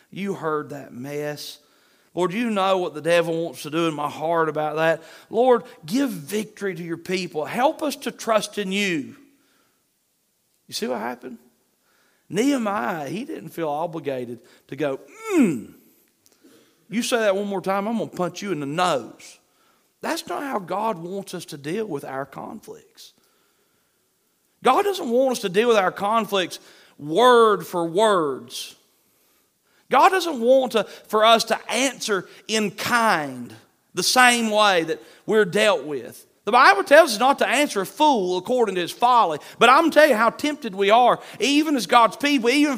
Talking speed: 175 wpm